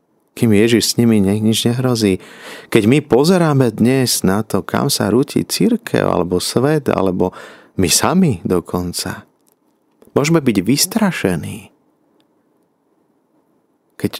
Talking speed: 110 wpm